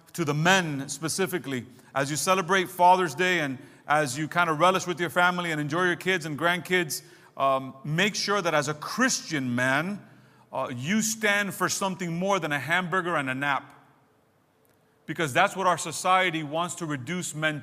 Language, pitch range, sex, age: English, 155-190 Hz, male, 30-49